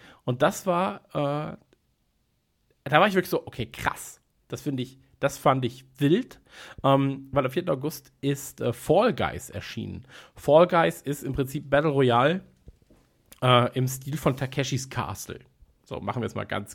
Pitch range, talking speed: 125-150 Hz, 170 wpm